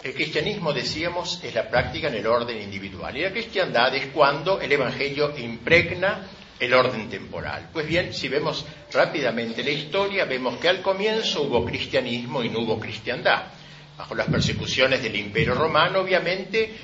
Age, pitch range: 60-79, 120-175 Hz